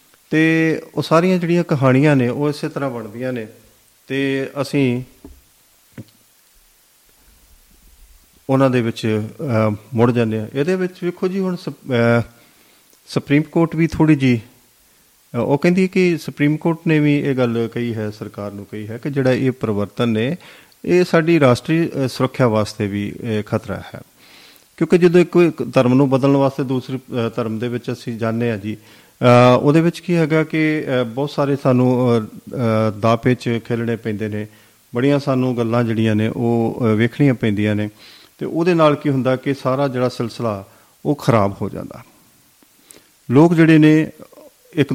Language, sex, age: Punjabi, male, 40-59